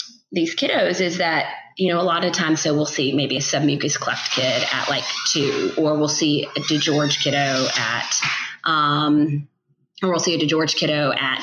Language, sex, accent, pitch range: English, female, American, 145-185 Hz